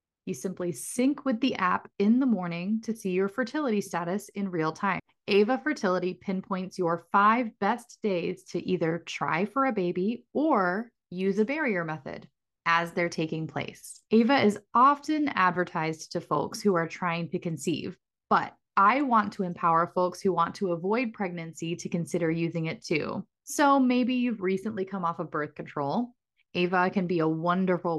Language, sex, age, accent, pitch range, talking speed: English, female, 20-39, American, 170-220 Hz, 170 wpm